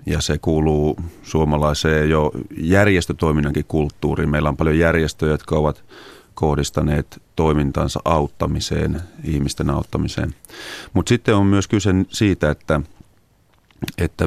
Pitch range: 75-90 Hz